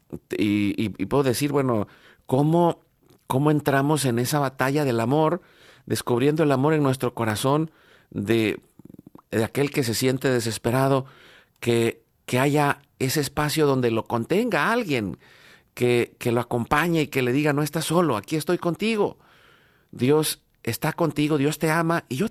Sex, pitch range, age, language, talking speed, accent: male, 120-155 Hz, 50-69, Spanish, 155 wpm, Mexican